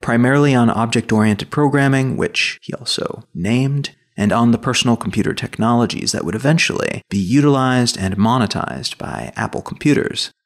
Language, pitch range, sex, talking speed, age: English, 120-150 Hz, male, 140 wpm, 30-49